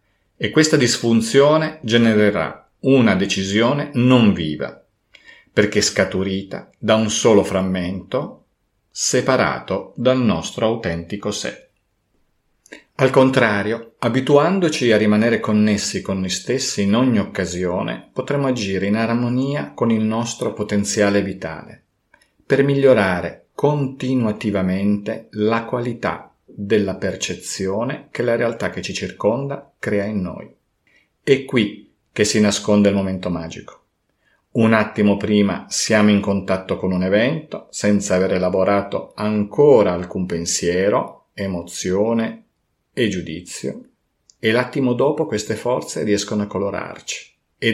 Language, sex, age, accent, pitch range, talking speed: Italian, male, 40-59, native, 100-120 Hz, 115 wpm